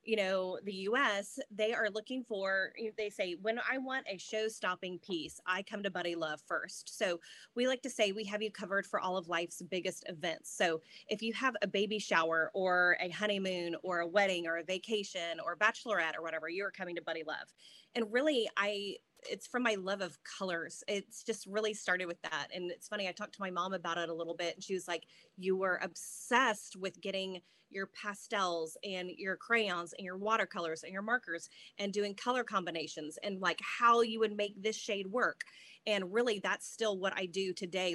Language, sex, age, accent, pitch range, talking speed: English, female, 20-39, American, 180-215 Hz, 210 wpm